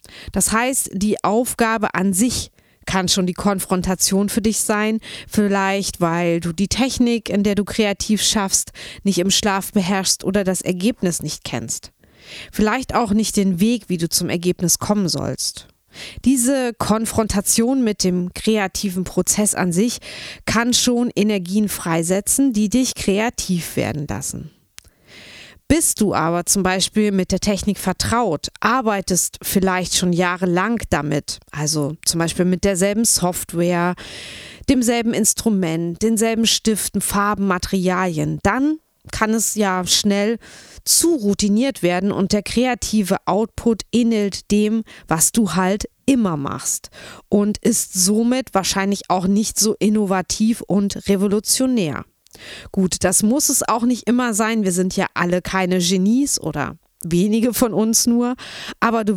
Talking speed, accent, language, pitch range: 140 wpm, German, German, 180-225 Hz